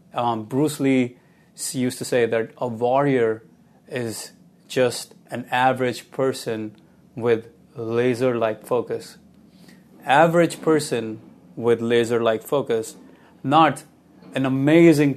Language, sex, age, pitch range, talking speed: English, male, 30-49, 120-155 Hz, 100 wpm